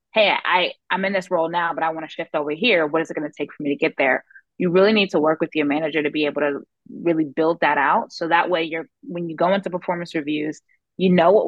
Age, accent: 20-39, American